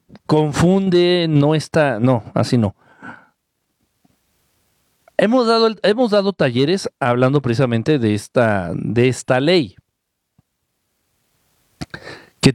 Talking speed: 90 wpm